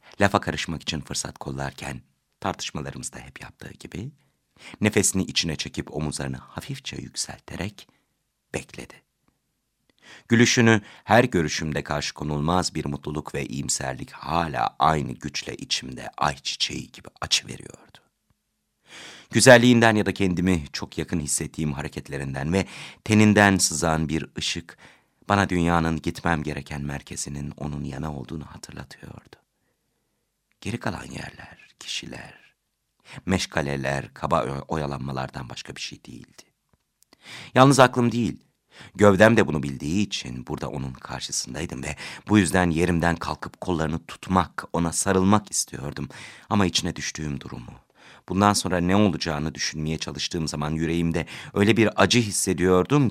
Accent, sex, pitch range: native, male, 75-100 Hz